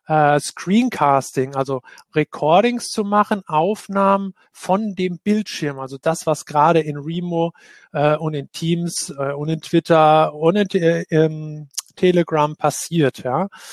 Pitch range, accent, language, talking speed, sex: 145-185 Hz, German, English, 115 wpm, male